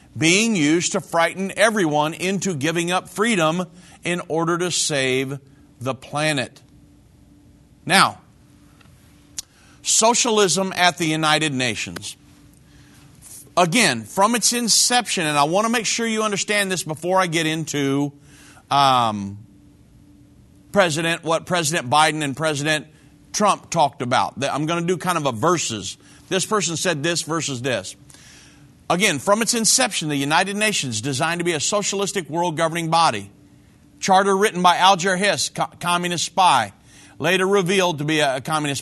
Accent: American